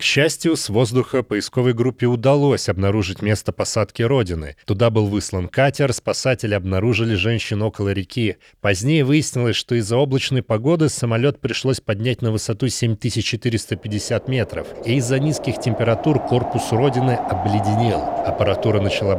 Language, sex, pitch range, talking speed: Russian, male, 105-135 Hz, 130 wpm